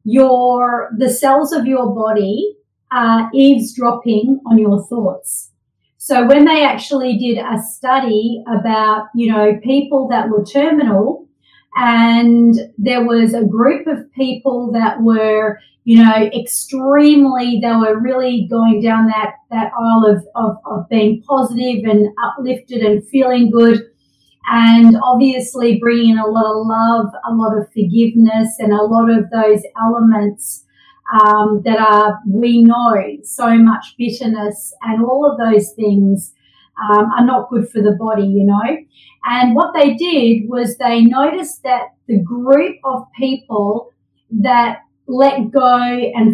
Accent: Australian